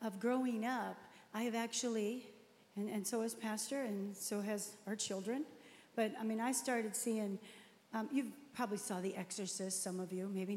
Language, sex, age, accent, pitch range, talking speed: English, female, 40-59, American, 195-235 Hz, 185 wpm